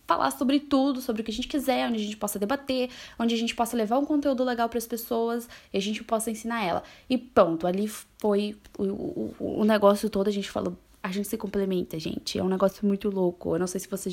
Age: 10-29